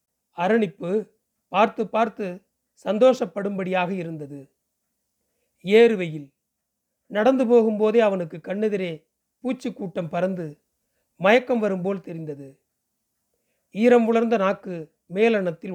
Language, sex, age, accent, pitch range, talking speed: Tamil, male, 40-59, native, 175-225 Hz, 70 wpm